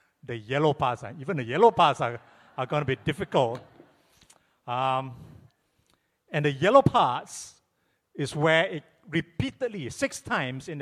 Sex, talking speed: male, 145 wpm